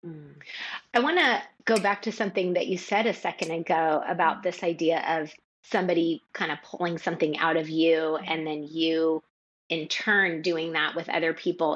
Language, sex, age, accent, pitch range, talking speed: English, female, 30-49, American, 160-190 Hz, 180 wpm